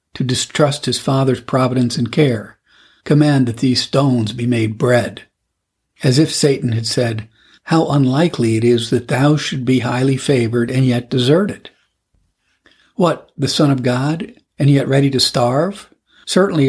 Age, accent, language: 60-79, American, English